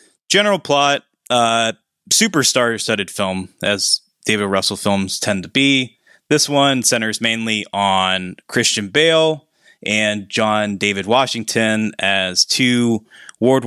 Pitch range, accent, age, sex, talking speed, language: 100-120 Hz, American, 20-39, male, 115 wpm, English